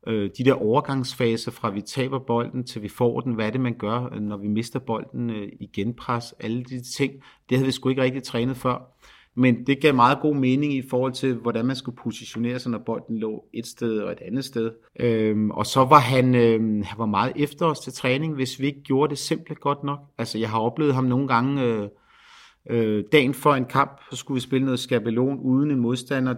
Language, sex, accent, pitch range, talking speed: Danish, male, native, 120-145 Hz, 230 wpm